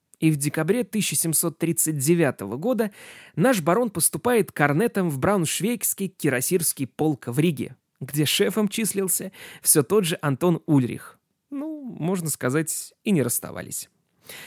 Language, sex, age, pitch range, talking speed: Russian, male, 20-39, 145-195 Hz, 120 wpm